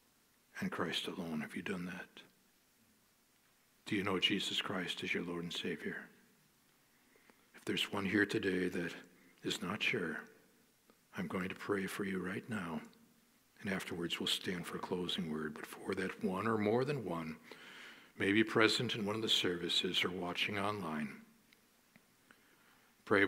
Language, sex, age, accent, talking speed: English, male, 60-79, American, 160 wpm